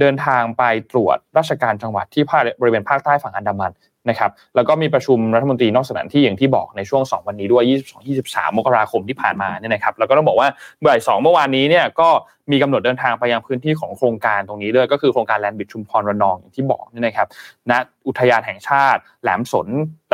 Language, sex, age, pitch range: Thai, male, 20-39, 115-145 Hz